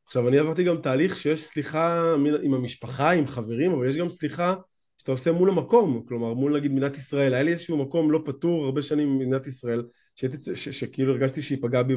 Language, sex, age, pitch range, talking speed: Hebrew, male, 20-39, 130-175 Hz, 195 wpm